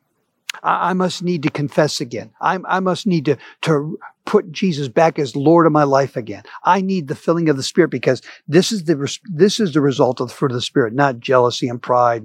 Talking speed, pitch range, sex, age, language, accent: 220 wpm, 140-210 Hz, male, 50-69, English, American